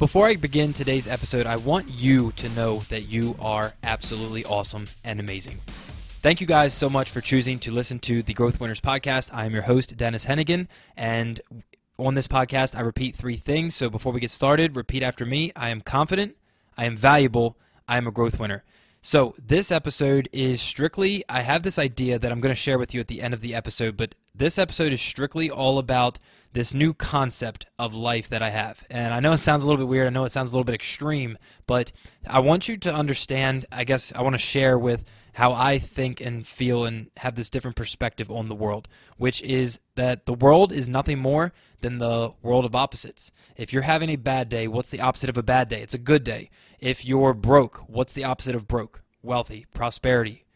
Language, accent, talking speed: English, American, 220 wpm